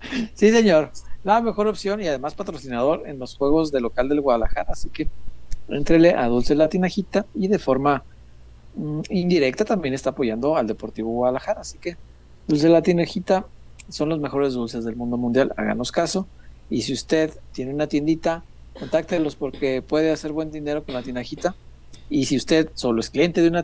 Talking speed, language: 175 wpm, Spanish